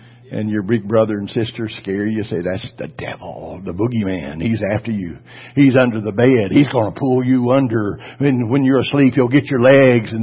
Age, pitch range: 60-79, 120-145 Hz